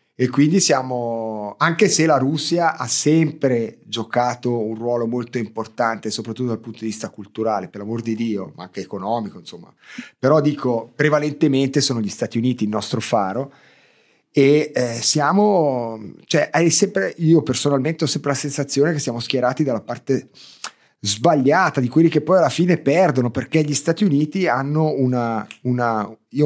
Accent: native